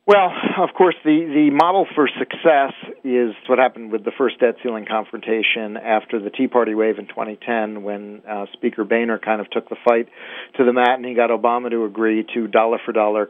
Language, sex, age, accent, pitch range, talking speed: English, male, 40-59, American, 110-125 Hz, 200 wpm